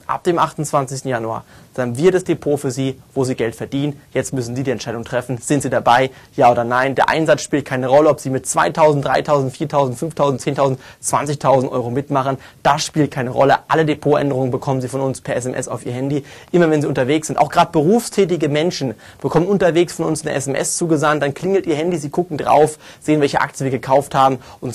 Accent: German